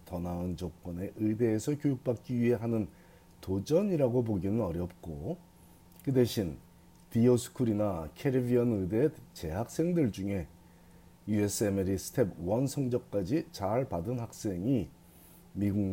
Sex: male